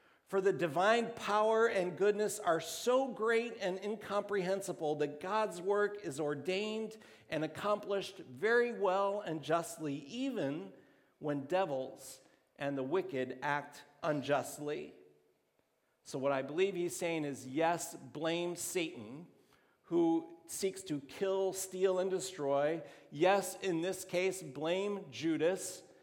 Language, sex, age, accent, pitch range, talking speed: English, male, 50-69, American, 145-190 Hz, 120 wpm